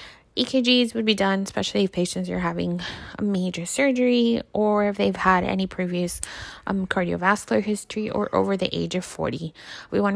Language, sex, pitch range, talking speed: English, female, 170-205 Hz, 170 wpm